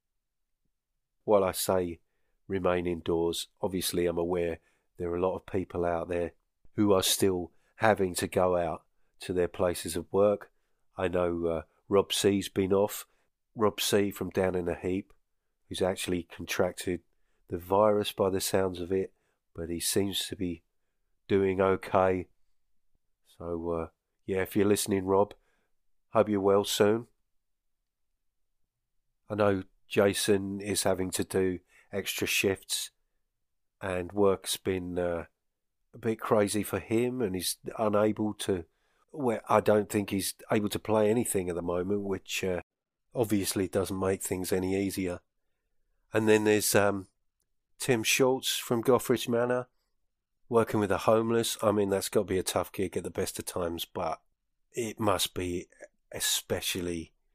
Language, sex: English, male